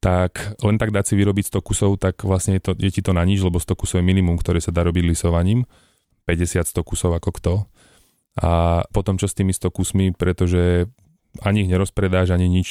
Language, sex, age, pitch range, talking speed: Slovak, male, 30-49, 85-95 Hz, 210 wpm